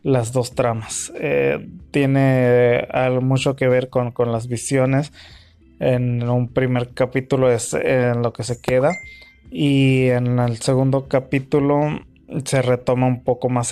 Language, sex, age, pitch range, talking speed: Spanish, male, 20-39, 125-140 Hz, 155 wpm